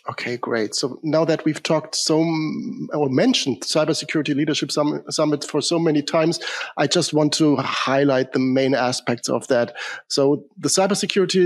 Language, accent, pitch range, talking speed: English, German, 135-160 Hz, 155 wpm